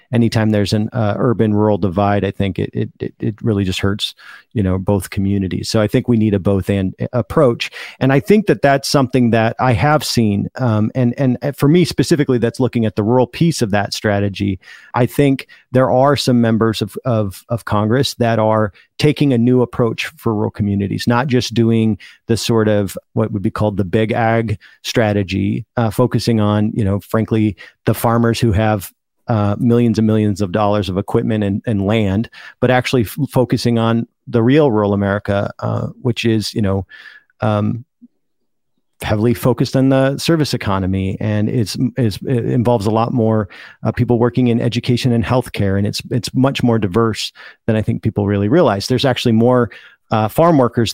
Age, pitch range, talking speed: 40-59, 105-125 Hz, 185 wpm